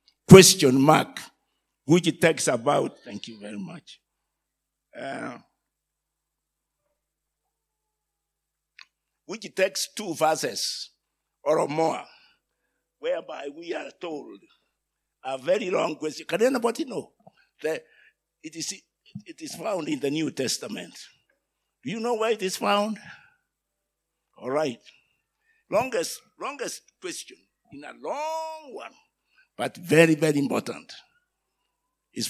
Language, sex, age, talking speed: English, male, 60-79, 110 wpm